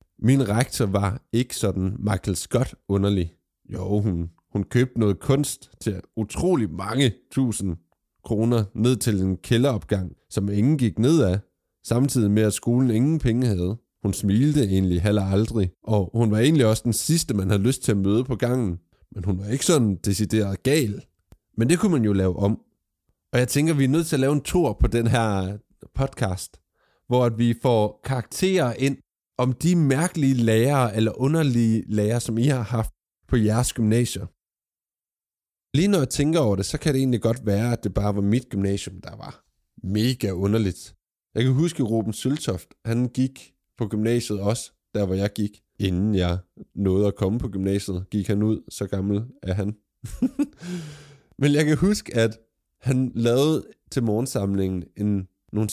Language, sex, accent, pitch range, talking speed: Danish, male, native, 100-125 Hz, 180 wpm